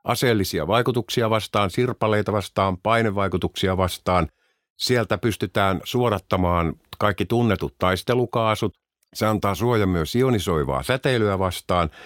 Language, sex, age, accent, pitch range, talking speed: Finnish, male, 50-69, native, 80-105 Hz, 100 wpm